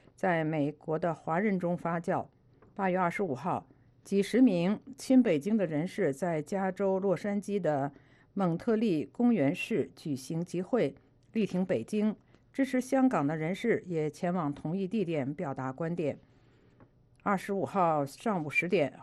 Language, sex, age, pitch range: English, female, 50-69, 150-205 Hz